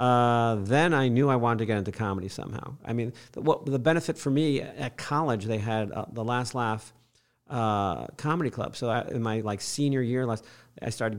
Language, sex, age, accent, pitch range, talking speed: English, male, 40-59, American, 105-125 Hz, 215 wpm